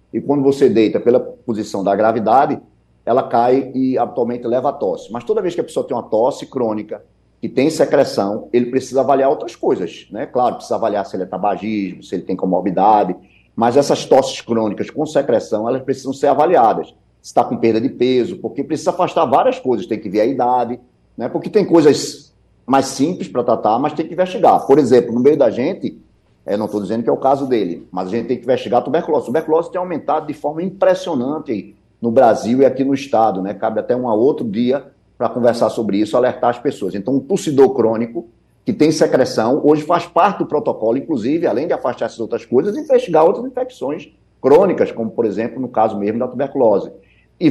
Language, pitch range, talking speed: Portuguese, 115-150 Hz, 210 wpm